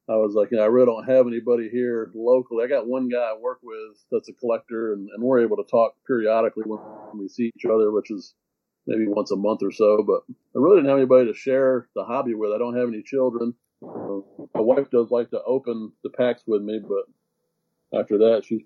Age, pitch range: 50-69, 110-125 Hz